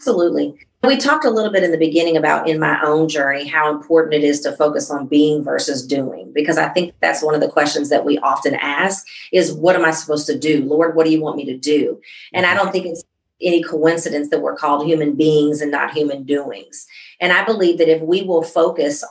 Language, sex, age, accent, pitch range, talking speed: English, female, 40-59, American, 150-185 Hz, 235 wpm